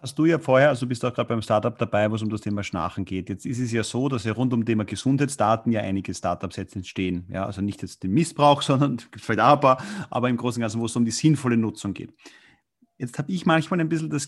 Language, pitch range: German, 110-140 Hz